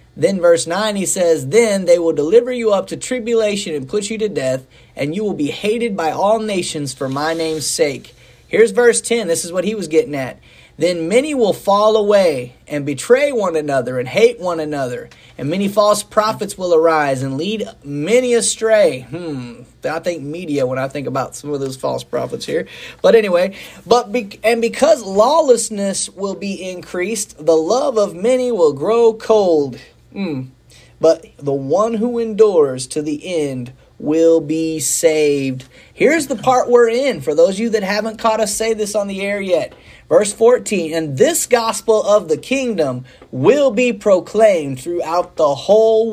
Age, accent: 30-49, American